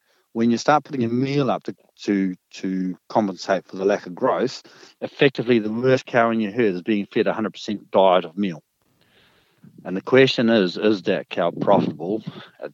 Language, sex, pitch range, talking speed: English, male, 95-115 Hz, 185 wpm